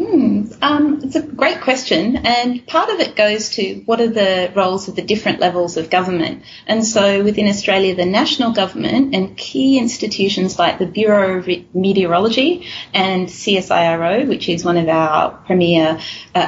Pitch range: 185-235 Hz